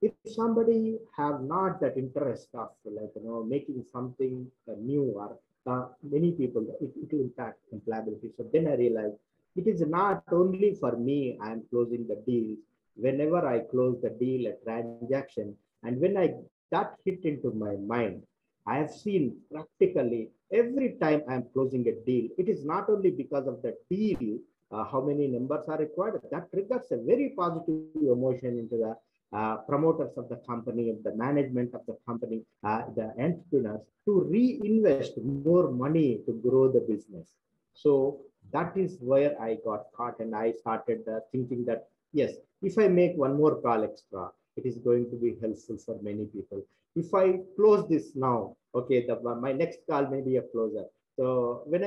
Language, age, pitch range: Hindi, 50-69, 120-165 Hz